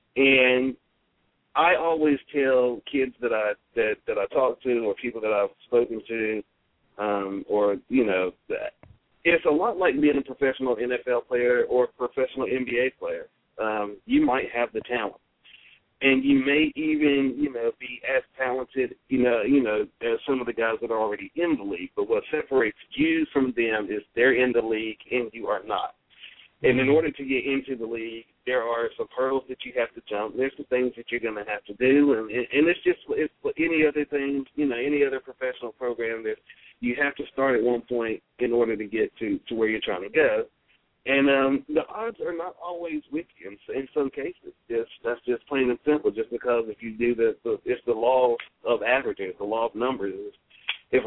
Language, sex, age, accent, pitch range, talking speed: English, male, 40-59, American, 115-145 Hz, 210 wpm